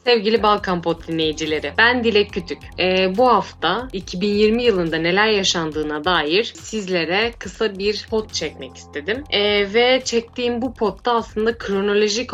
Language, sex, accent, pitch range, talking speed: Turkish, female, native, 160-220 Hz, 135 wpm